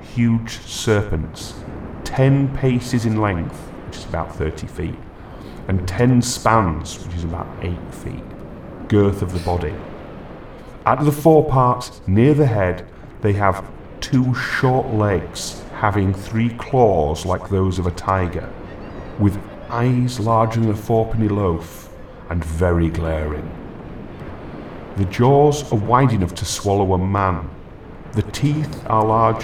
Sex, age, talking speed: male, 40-59, 135 wpm